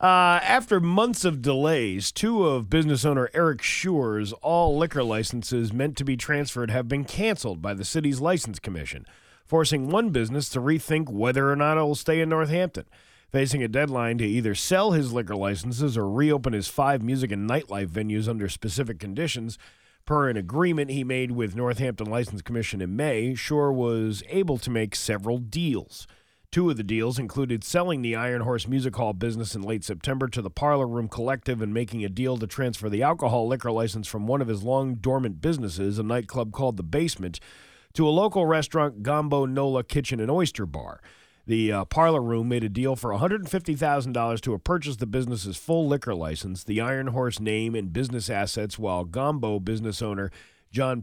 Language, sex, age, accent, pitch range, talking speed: English, male, 40-59, American, 110-145 Hz, 185 wpm